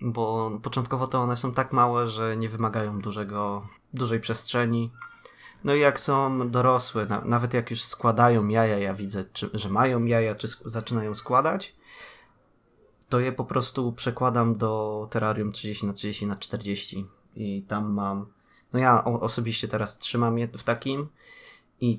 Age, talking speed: 20-39, 135 wpm